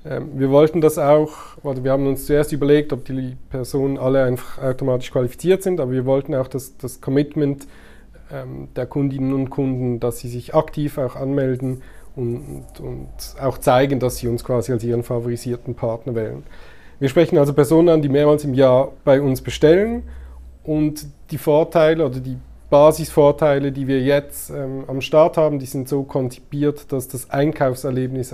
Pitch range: 125-150 Hz